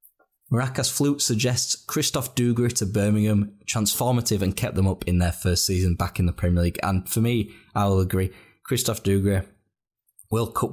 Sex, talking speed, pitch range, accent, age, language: male, 175 wpm, 95-110 Hz, British, 20-39, English